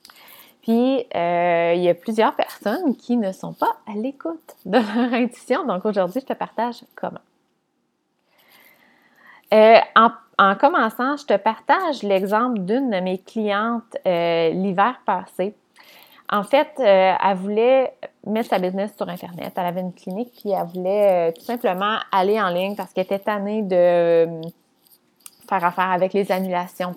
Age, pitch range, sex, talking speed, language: 20-39, 185-235 Hz, female, 160 wpm, French